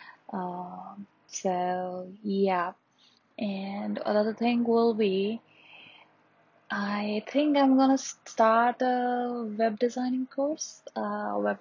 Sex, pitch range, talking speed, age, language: female, 185-225 Hz, 105 wpm, 20-39, English